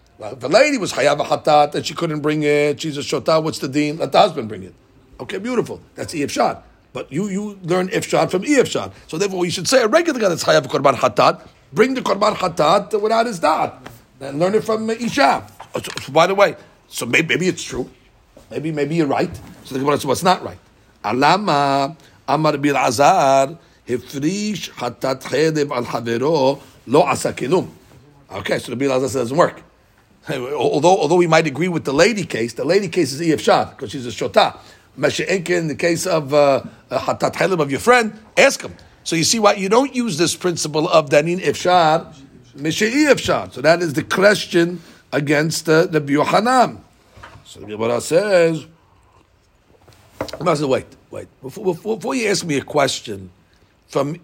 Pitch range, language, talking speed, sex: 135-185 Hz, English, 180 wpm, male